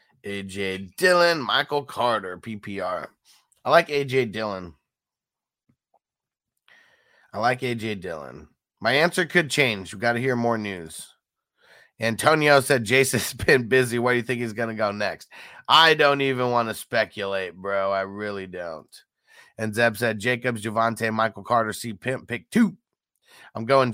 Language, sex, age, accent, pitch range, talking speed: English, male, 30-49, American, 110-140 Hz, 150 wpm